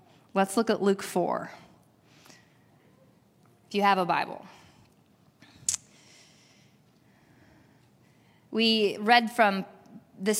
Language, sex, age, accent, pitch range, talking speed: English, female, 20-39, American, 195-235 Hz, 80 wpm